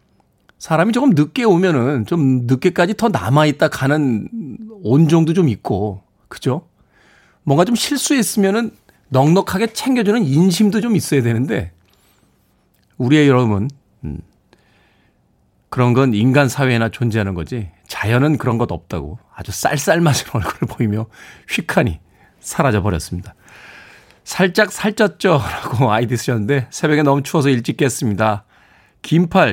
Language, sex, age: Korean, male, 40-59